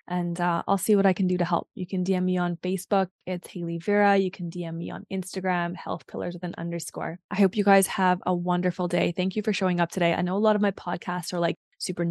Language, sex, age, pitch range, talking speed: English, female, 20-39, 175-195 Hz, 265 wpm